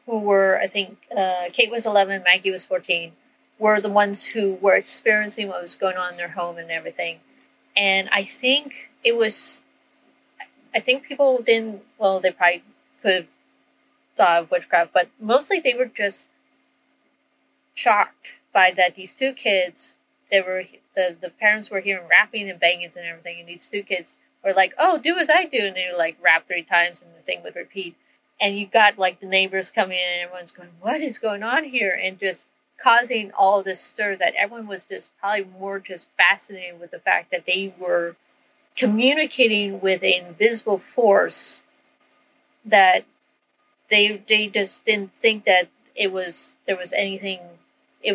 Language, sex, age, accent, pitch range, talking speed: English, female, 30-49, American, 180-230 Hz, 180 wpm